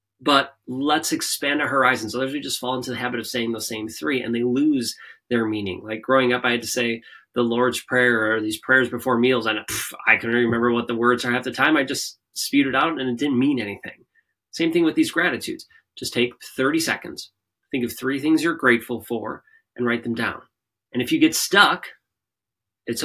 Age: 20-39